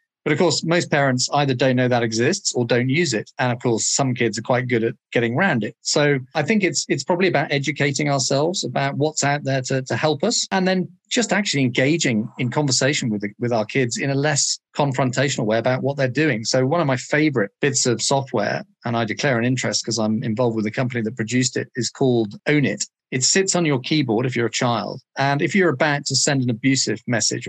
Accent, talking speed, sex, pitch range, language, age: British, 235 wpm, male, 125-155 Hz, English, 40-59